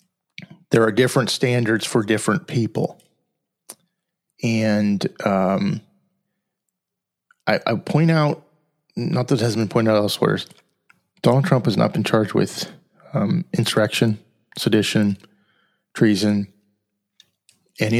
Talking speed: 110 wpm